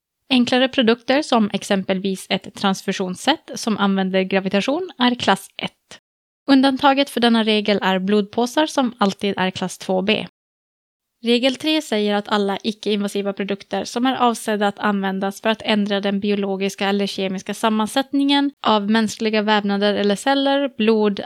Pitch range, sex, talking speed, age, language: 195-240 Hz, female, 140 wpm, 20-39, Swedish